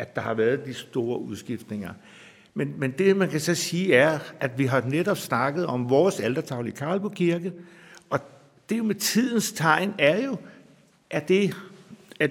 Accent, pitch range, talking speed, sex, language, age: native, 130-180 Hz, 170 wpm, male, Danish, 60-79